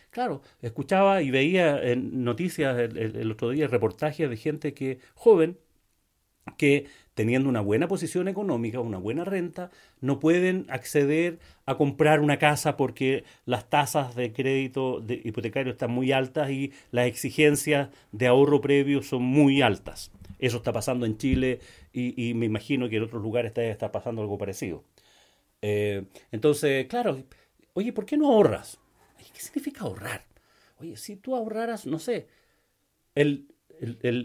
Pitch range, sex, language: 125-165 Hz, male, Spanish